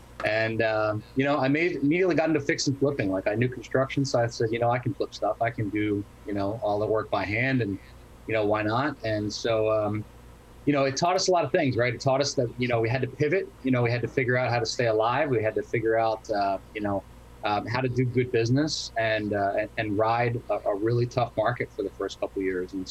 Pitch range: 105-125 Hz